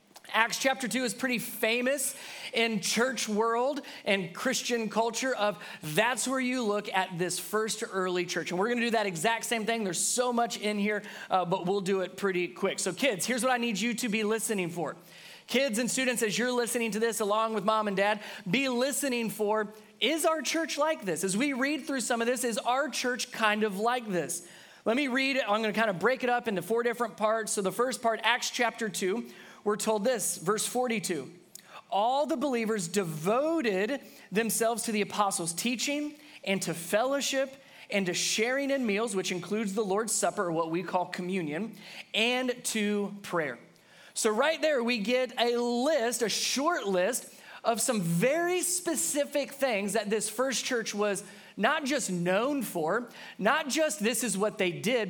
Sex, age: male, 30-49